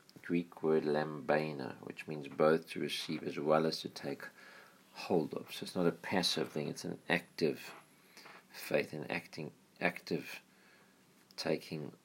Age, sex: 50-69, male